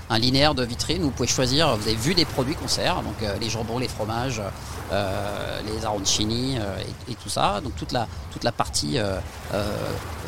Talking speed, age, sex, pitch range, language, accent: 210 wpm, 40-59, male, 105-135 Hz, French, French